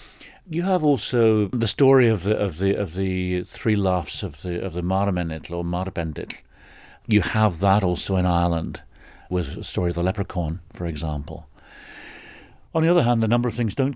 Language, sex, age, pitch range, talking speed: English, male, 50-69, 85-110 Hz, 185 wpm